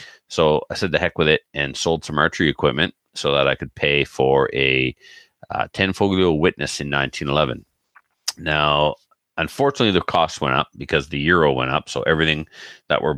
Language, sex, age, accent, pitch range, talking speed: English, male, 40-59, American, 65-75 Hz, 180 wpm